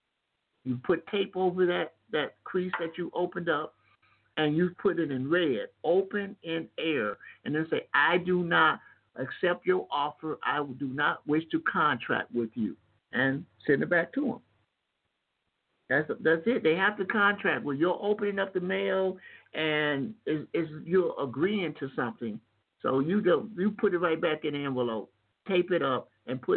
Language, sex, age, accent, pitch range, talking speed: English, male, 60-79, American, 145-190 Hz, 180 wpm